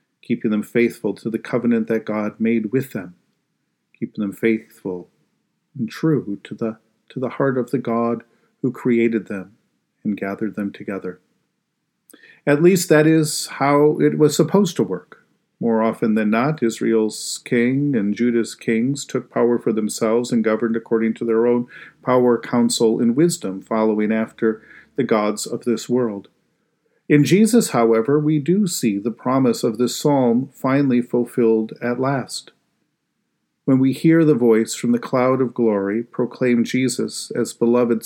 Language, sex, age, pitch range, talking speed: English, male, 50-69, 110-135 Hz, 160 wpm